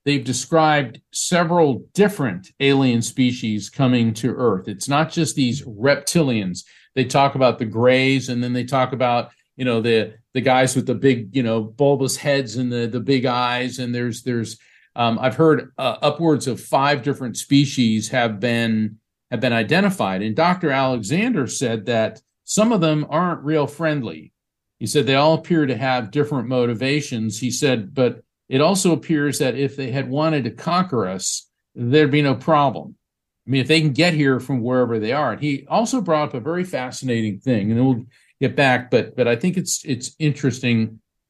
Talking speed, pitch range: 185 wpm, 120-150 Hz